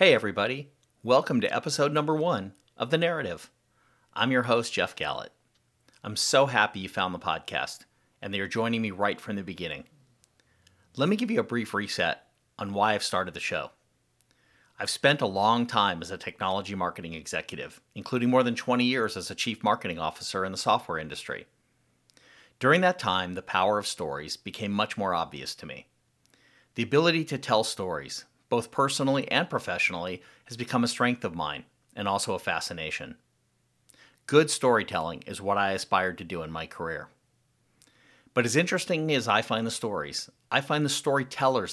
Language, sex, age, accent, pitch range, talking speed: English, male, 40-59, American, 100-130 Hz, 175 wpm